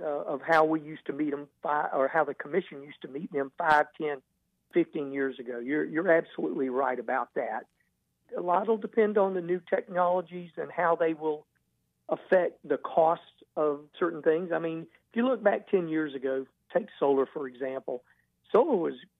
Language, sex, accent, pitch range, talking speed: English, male, American, 145-180 Hz, 190 wpm